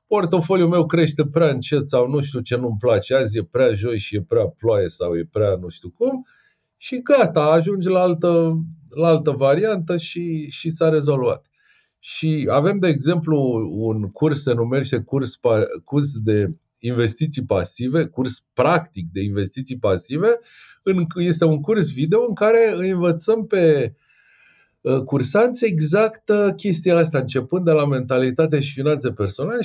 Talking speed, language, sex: 150 wpm, Romanian, male